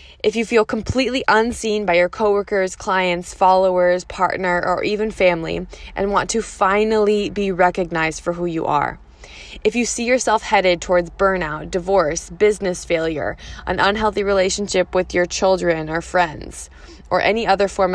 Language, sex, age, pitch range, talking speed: English, female, 20-39, 175-210 Hz, 155 wpm